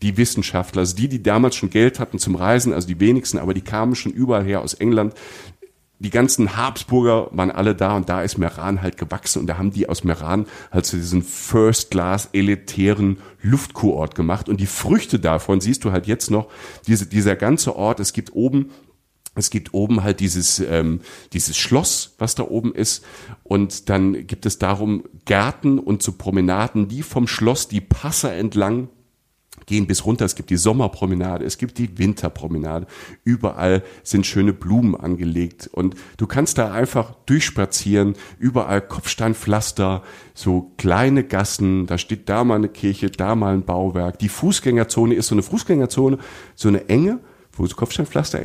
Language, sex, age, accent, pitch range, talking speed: German, male, 50-69, German, 95-115 Hz, 175 wpm